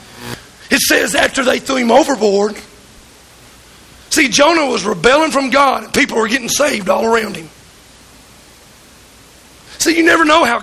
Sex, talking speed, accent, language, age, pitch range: male, 145 wpm, American, English, 40-59, 235-290 Hz